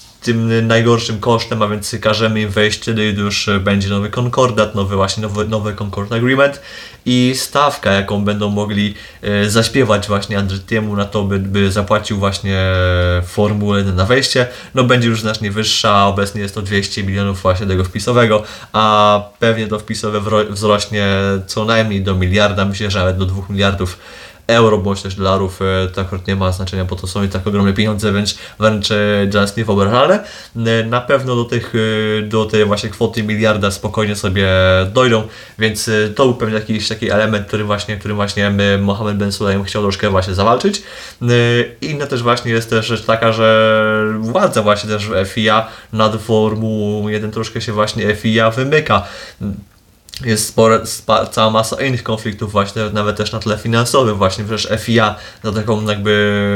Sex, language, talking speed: male, Polish, 165 wpm